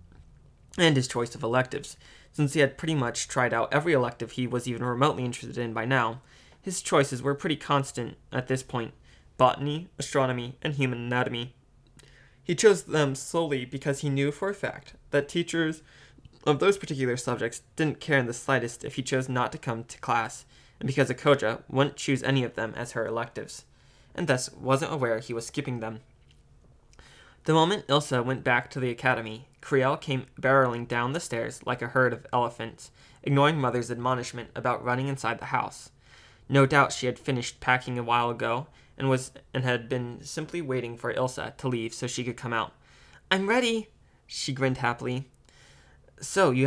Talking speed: 185 wpm